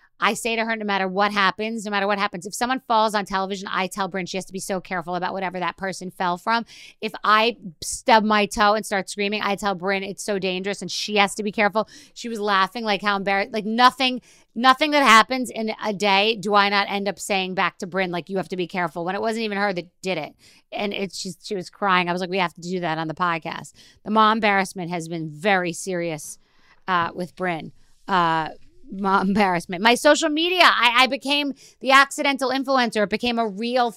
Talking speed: 230 wpm